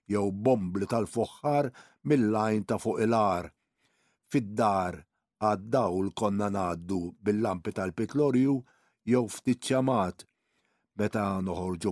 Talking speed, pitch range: 85 wpm, 100-125 Hz